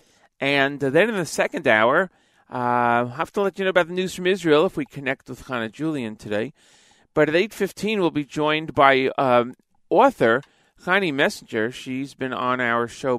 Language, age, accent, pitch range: English, 40-59, American, 115-150 Hz